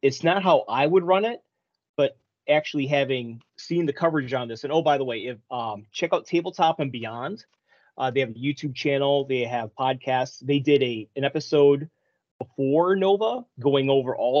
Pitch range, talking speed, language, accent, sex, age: 125-150 Hz, 190 wpm, English, American, male, 30-49